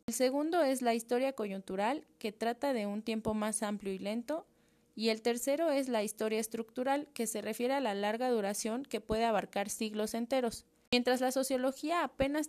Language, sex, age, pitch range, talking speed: Spanish, female, 20-39, 210-265 Hz, 185 wpm